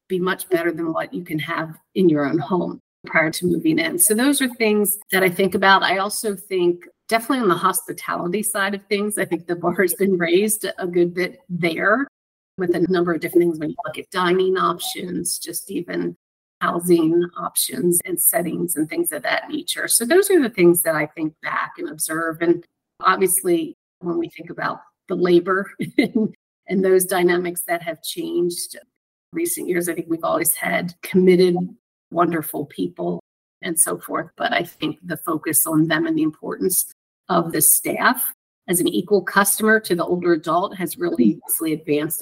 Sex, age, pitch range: female, 40-59, 170-265 Hz